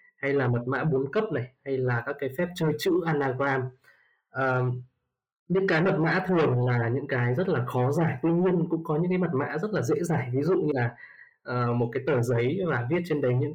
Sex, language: male, Vietnamese